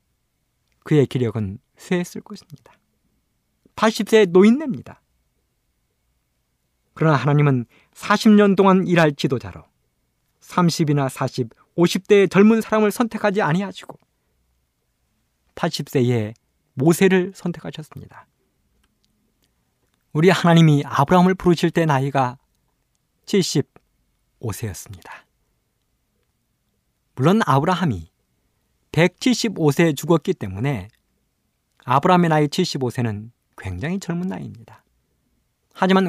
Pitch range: 120-190 Hz